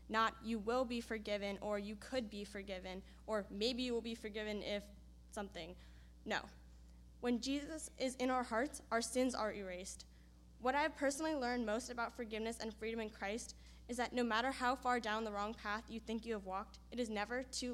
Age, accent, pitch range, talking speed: 10-29, American, 200-245 Hz, 205 wpm